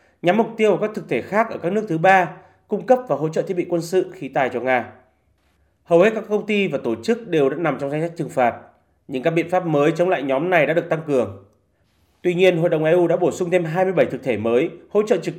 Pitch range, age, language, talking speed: 135-185 Hz, 30-49, Vietnamese, 275 wpm